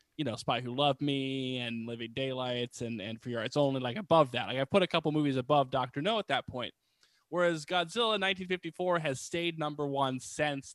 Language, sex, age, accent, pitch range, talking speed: English, male, 20-39, American, 130-170 Hz, 210 wpm